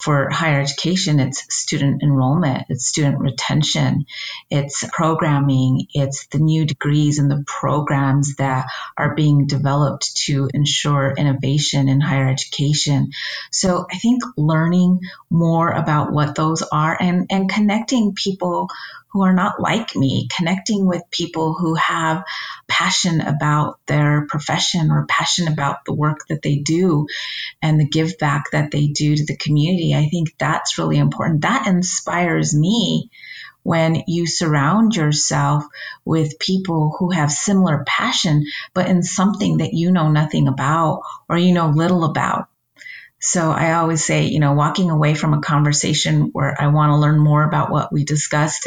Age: 30-49